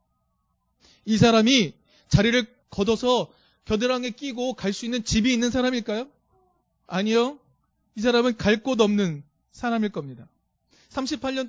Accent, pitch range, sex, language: native, 155-230 Hz, male, Korean